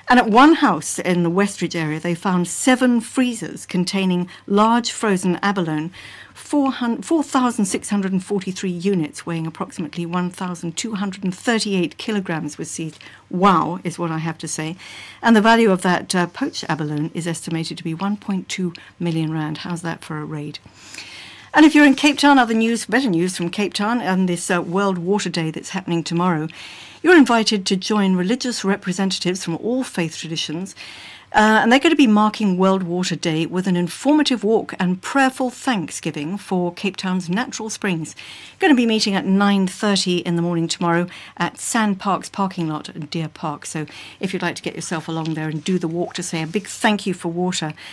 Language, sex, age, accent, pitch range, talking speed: English, female, 60-79, British, 170-215 Hz, 180 wpm